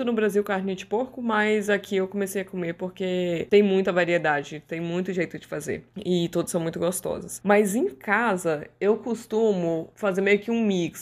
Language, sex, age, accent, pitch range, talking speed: Portuguese, female, 20-39, Brazilian, 160-195 Hz, 190 wpm